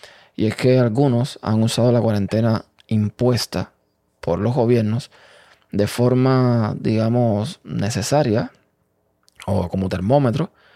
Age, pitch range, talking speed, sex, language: 20-39, 110-125 Hz, 105 wpm, male, Spanish